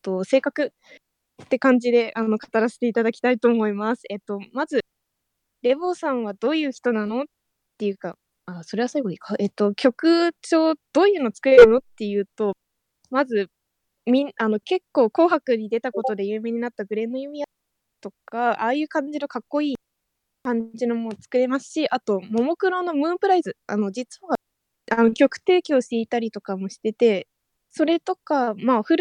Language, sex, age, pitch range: English, female, 20-39, 220-290 Hz